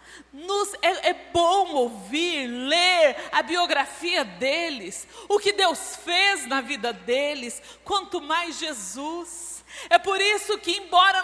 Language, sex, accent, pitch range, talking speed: Portuguese, female, Brazilian, 285-375 Hz, 130 wpm